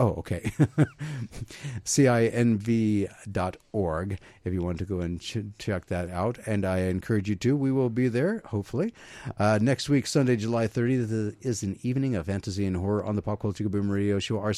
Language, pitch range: English, 110-130 Hz